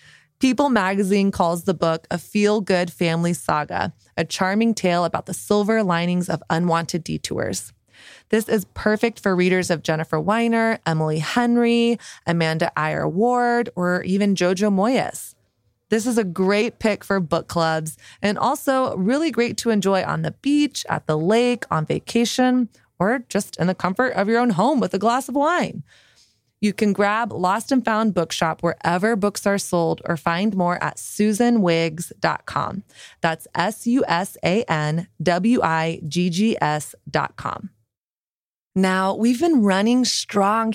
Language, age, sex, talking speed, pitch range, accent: English, 20-39, female, 140 wpm, 170-220 Hz, American